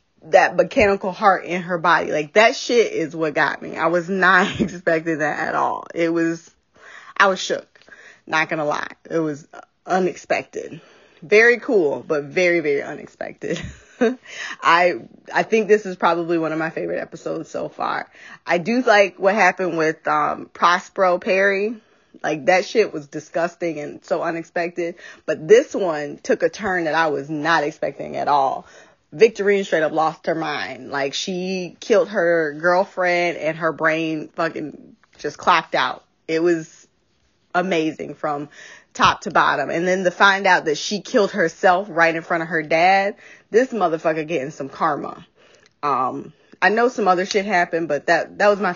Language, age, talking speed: English, 20-39, 170 wpm